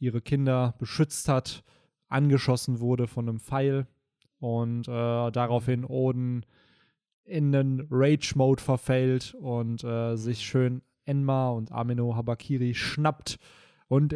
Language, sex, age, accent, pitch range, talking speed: German, male, 20-39, German, 120-145 Hz, 115 wpm